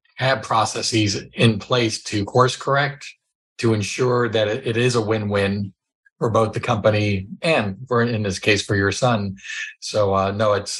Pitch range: 100-120 Hz